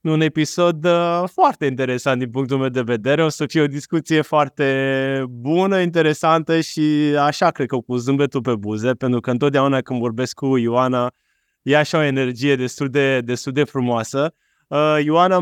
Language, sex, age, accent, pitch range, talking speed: Romanian, male, 20-39, native, 125-150 Hz, 165 wpm